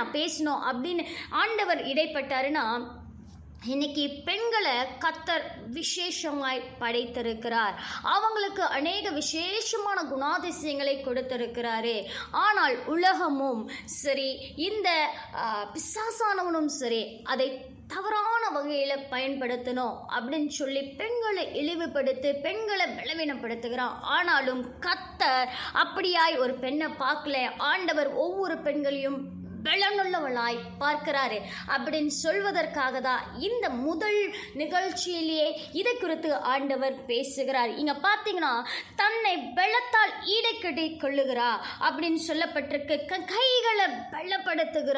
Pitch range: 260-370 Hz